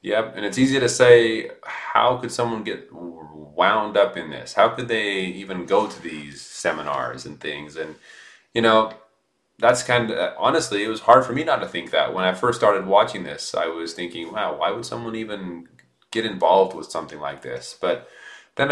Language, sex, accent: English, male, American